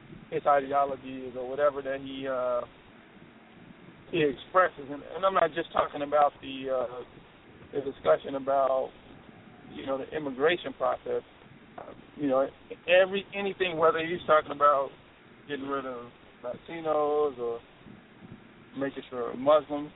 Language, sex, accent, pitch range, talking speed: English, male, American, 135-155 Hz, 125 wpm